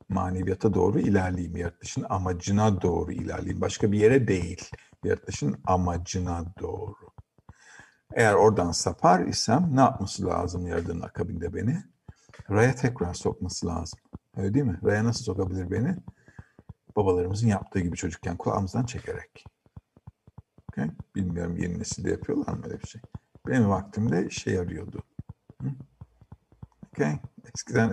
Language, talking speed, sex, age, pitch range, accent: Turkish, 120 wpm, male, 50-69, 90-110 Hz, native